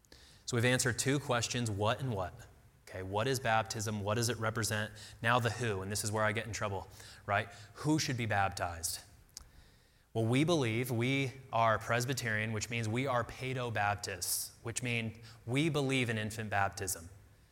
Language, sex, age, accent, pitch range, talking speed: English, male, 20-39, American, 110-135 Hz, 170 wpm